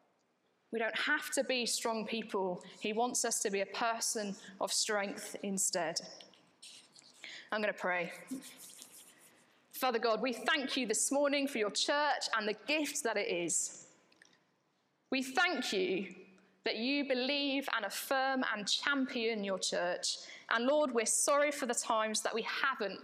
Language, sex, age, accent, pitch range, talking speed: English, female, 20-39, British, 205-265 Hz, 155 wpm